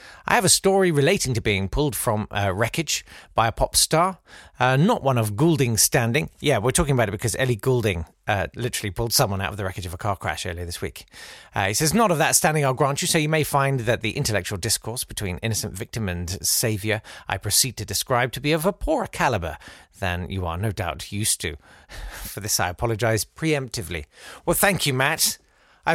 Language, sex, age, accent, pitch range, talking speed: English, male, 40-59, British, 100-150 Hz, 215 wpm